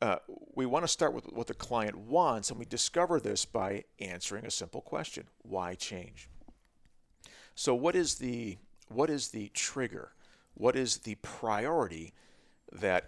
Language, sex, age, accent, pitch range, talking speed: English, male, 40-59, American, 90-120 Hz, 145 wpm